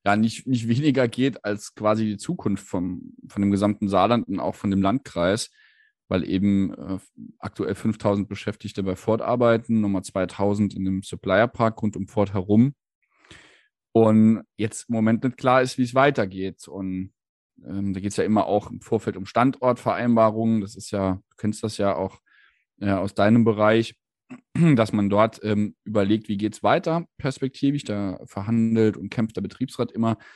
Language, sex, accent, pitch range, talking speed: German, male, German, 100-120 Hz, 175 wpm